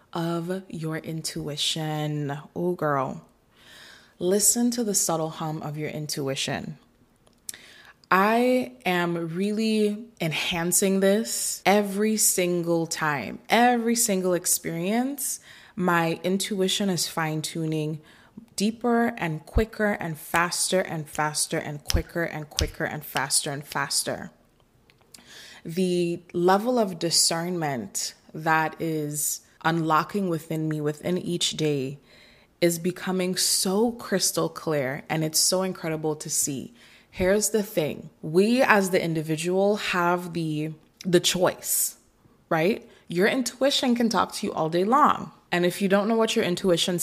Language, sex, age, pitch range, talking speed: English, female, 20-39, 155-195 Hz, 120 wpm